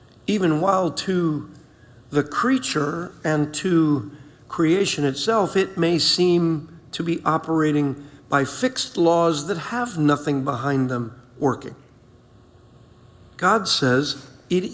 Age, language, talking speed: 50-69, English, 110 wpm